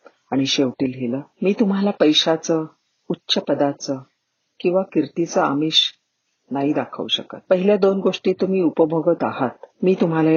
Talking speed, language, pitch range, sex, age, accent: 120 wpm, Marathi, 140-175 Hz, female, 40-59, native